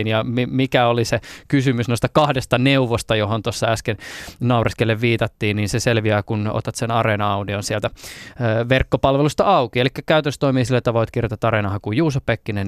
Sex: male